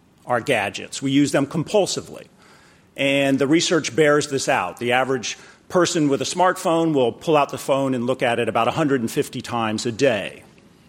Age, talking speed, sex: 40-59, 175 wpm, male